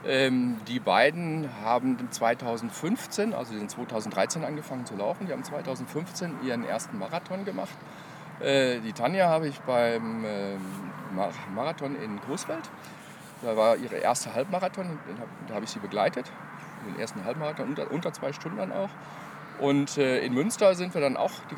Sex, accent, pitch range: male, German, 125-170 Hz